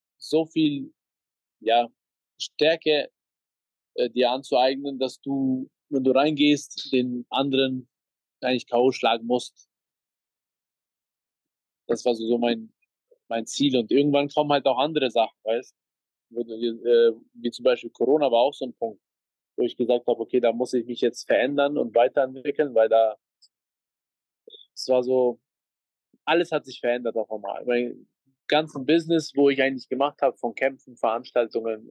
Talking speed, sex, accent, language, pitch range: 150 wpm, male, German, German, 120-150 Hz